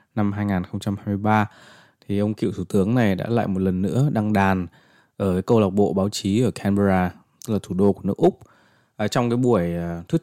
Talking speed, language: 210 wpm, Vietnamese